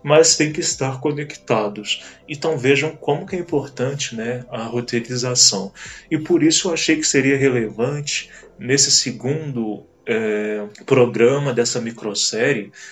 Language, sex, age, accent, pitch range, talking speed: Portuguese, male, 20-39, Brazilian, 125-150 Hz, 130 wpm